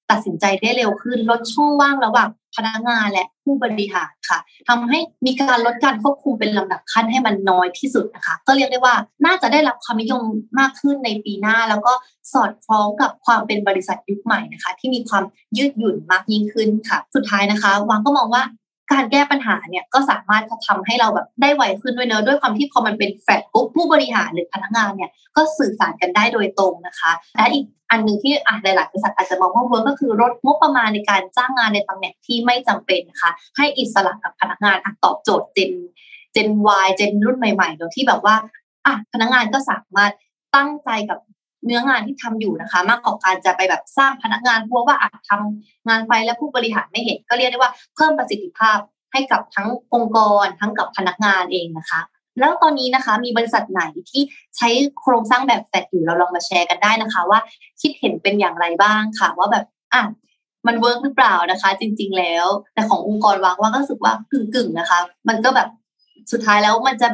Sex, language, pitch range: female, Thai, 200-255 Hz